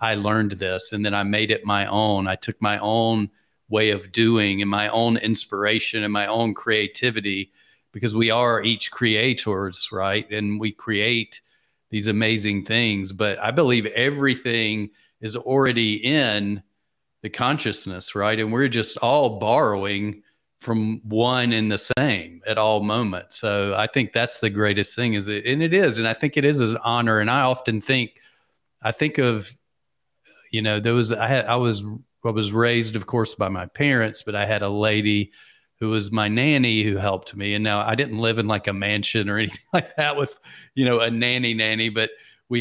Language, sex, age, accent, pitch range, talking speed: English, male, 40-59, American, 105-120 Hz, 190 wpm